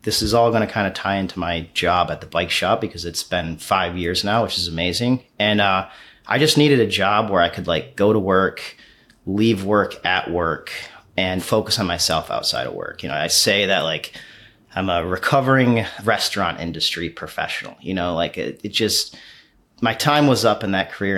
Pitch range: 90-115 Hz